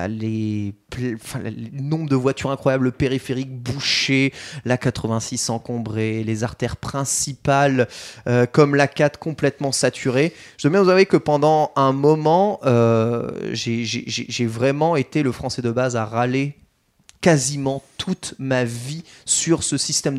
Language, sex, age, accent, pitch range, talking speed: French, male, 20-39, French, 130-185 Hz, 140 wpm